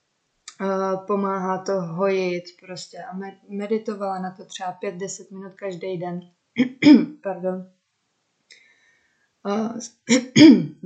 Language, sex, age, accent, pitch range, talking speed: Czech, female, 20-39, native, 185-200 Hz, 85 wpm